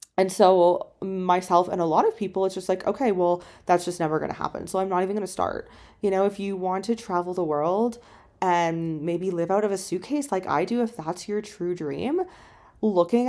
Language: English